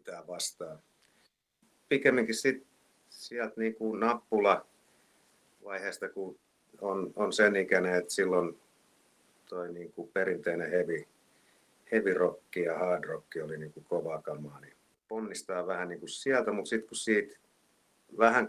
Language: Finnish